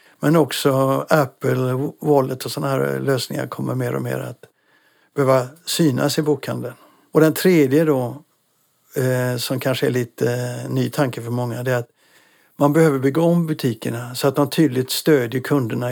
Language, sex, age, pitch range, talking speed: Swedish, male, 60-79, 125-150 Hz, 160 wpm